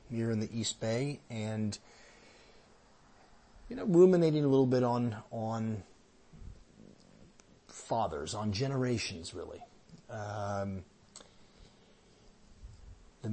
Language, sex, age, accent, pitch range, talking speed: English, male, 30-49, American, 105-120 Hz, 90 wpm